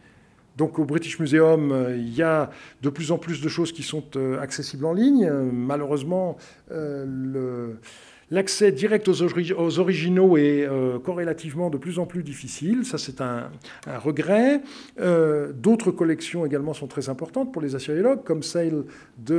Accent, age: French, 50-69